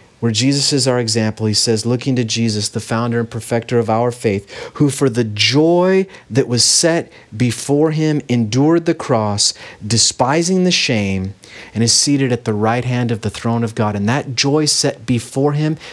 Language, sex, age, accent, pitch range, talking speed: English, male, 40-59, American, 110-130 Hz, 190 wpm